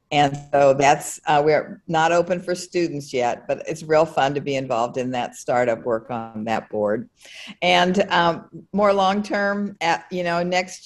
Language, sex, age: English, female, 50-69